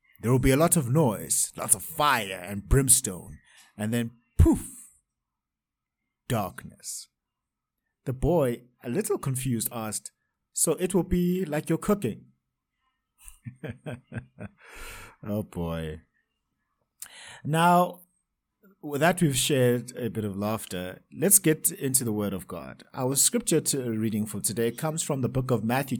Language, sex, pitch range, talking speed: English, male, 110-150 Hz, 135 wpm